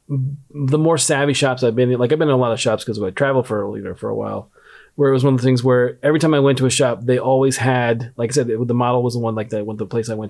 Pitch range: 115-140 Hz